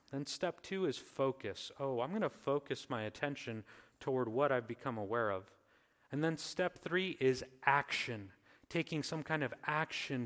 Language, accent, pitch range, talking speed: English, American, 130-180 Hz, 170 wpm